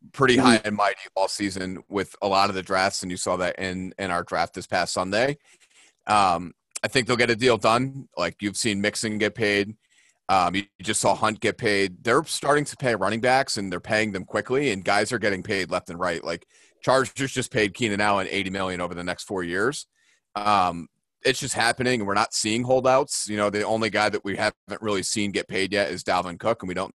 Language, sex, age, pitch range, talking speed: English, male, 30-49, 95-120 Hz, 230 wpm